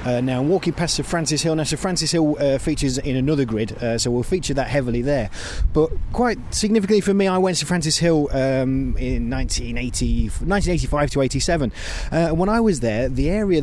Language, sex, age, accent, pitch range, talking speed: English, male, 30-49, British, 120-155 Hz, 205 wpm